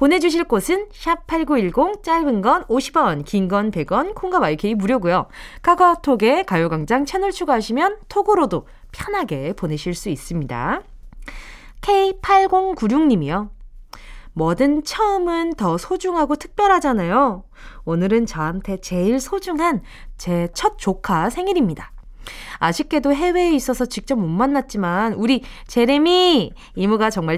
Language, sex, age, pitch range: Korean, female, 20-39, 210-335 Hz